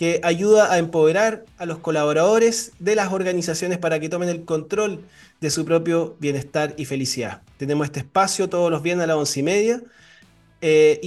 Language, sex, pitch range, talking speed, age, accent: Spanish, male, 145-195 Hz, 180 wpm, 20-39, Argentinian